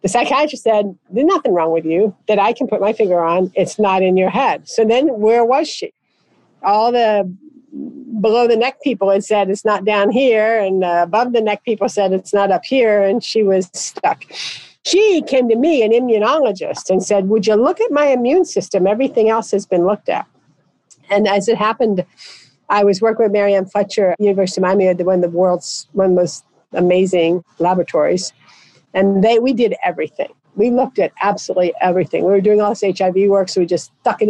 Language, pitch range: English, 190-235 Hz